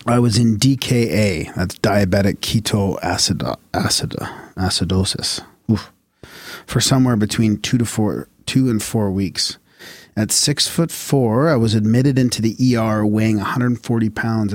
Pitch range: 100-125 Hz